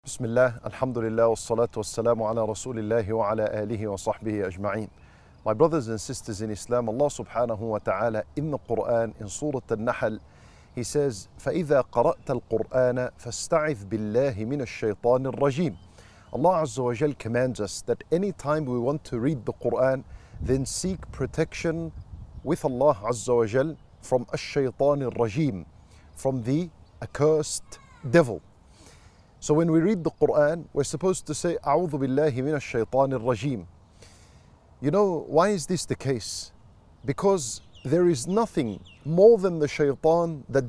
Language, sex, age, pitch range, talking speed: English, male, 50-69, 115-155 Hz, 135 wpm